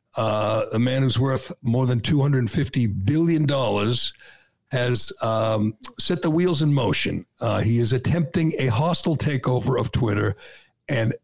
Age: 60-79